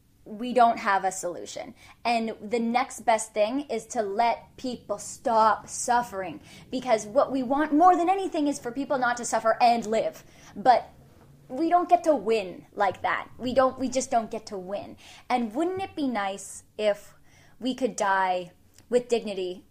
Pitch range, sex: 190-245 Hz, female